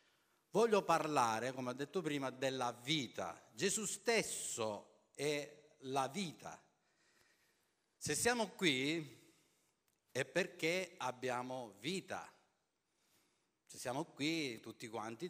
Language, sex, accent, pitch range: Italian, male, native, 125-180 Hz